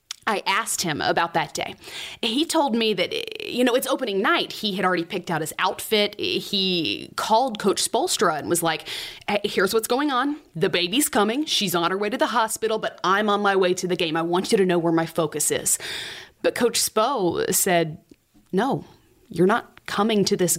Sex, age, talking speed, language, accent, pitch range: female, 20-39, 205 wpm, English, American, 180-230 Hz